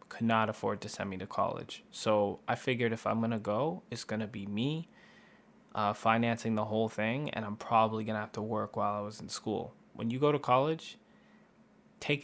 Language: English